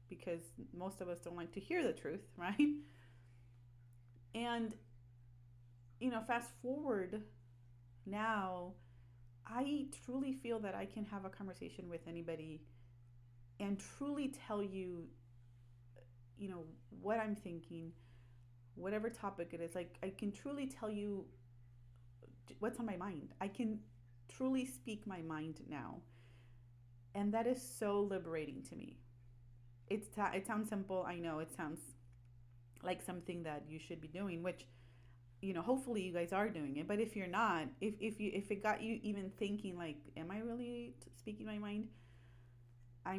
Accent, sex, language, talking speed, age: American, female, English, 155 wpm, 30-49